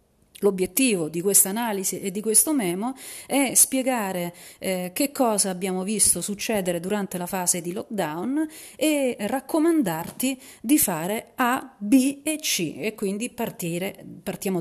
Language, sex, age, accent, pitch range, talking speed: Italian, female, 40-59, native, 190-260 Hz, 130 wpm